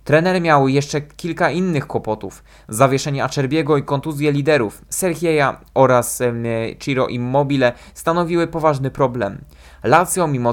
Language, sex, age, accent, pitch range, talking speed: Polish, male, 20-39, native, 130-165 Hz, 120 wpm